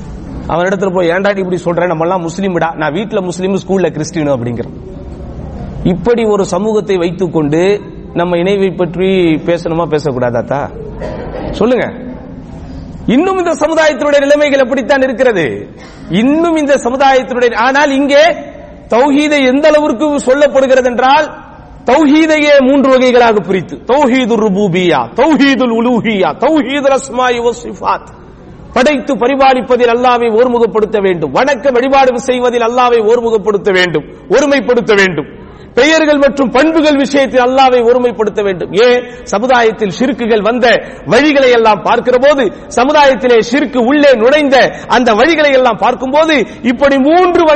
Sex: male